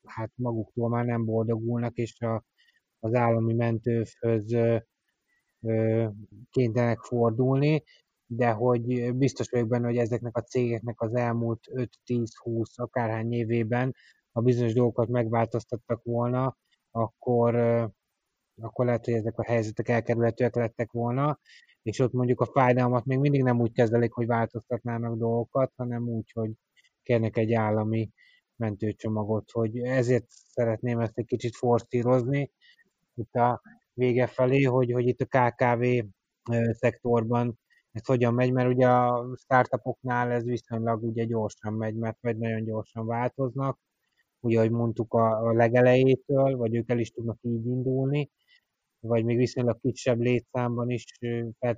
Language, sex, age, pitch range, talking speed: Hungarian, male, 20-39, 115-125 Hz, 130 wpm